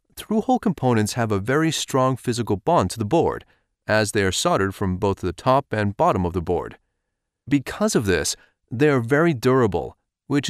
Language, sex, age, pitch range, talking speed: English, male, 30-49, 100-145 Hz, 185 wpm